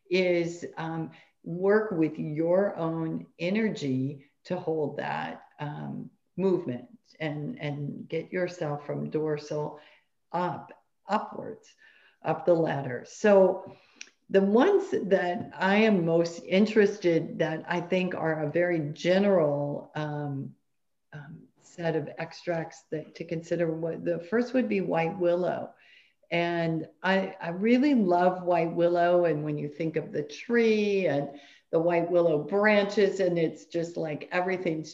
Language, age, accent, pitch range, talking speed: English, 50-69, American, 155-185 Hz, 130 wpm